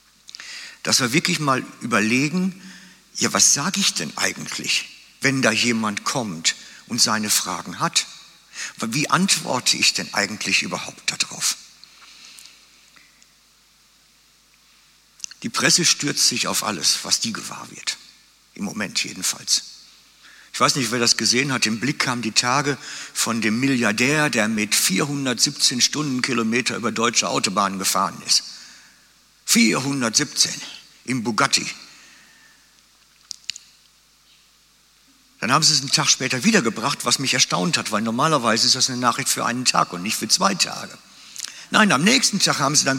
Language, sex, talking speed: German, male, 140 wpm